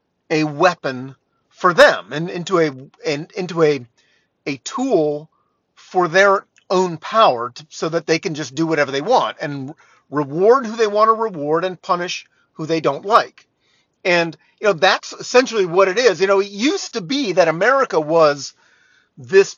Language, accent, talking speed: English, American, 175 wpm